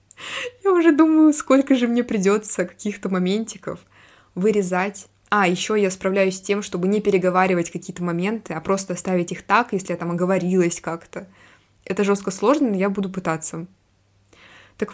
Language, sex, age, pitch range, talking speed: Russian, female, 20-39, 175-210 Hz, 155 wpm